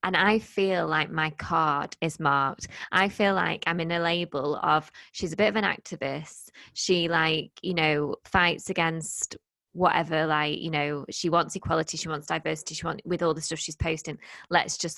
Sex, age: female, 20-39